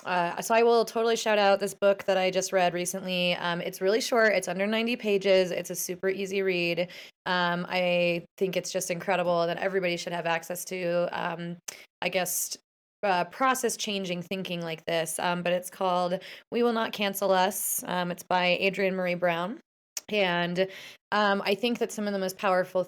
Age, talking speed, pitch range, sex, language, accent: 20-39, 190 wpm, 175-200 Hz, female, English, American